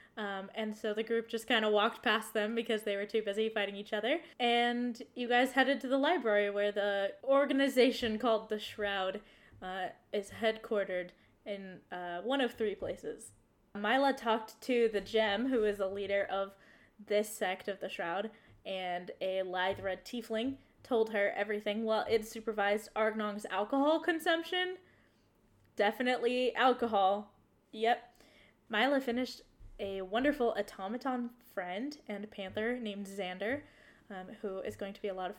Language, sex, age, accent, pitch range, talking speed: English, female, 10-29, American, 200-245 Hz, 155 wpm